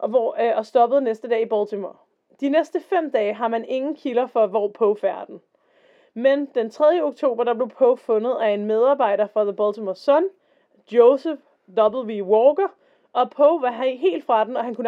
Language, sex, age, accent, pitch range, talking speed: Danish, female, 30-49, native, 220-285 Hz, 185 wpm